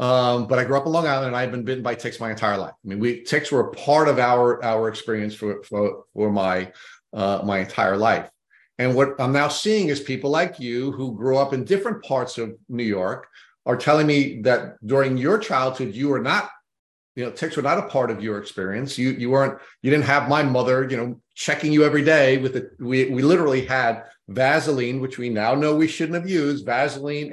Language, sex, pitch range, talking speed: English, male, 120-145 Hz, 230 wpm